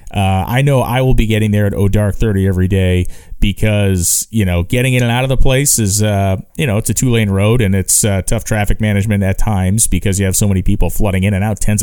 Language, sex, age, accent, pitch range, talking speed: English, male, 30-49, American, 100-125 Hz, 260 wpm